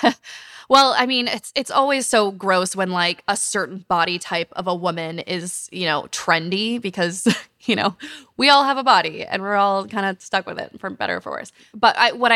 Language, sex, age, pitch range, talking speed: English, female, 20-39, 180-215 Hz, 220 wpm